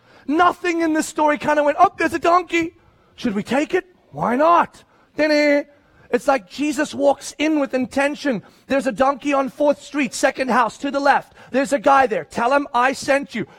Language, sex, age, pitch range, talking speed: English, male, 30-49, 230-285 Hz, 195 wpm